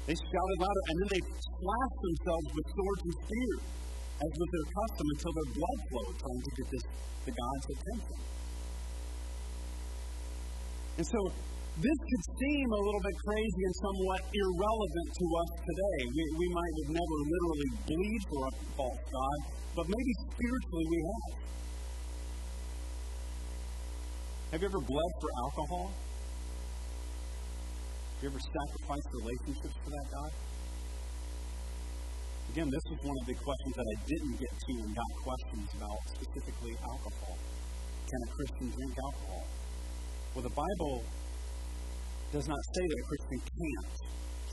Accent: American